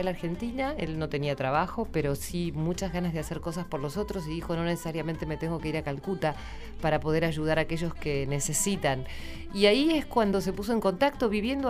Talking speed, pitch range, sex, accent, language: 215 wpm, 150-195 Hz, female, Argentinian, Spanish